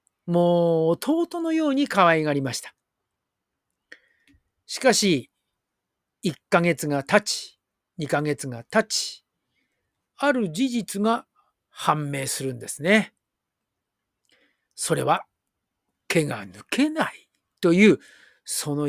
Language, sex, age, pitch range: Japanese, male, 50-69, 145-225 Hz